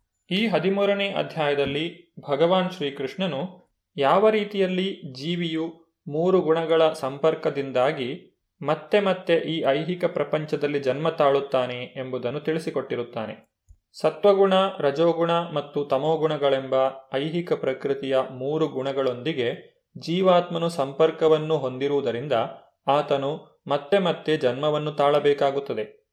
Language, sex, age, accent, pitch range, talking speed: Kannada, male, 30-49, native, 140-180 Hz, 85 wpm